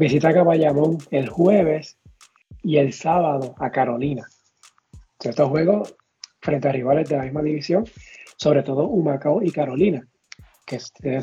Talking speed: 140 wpm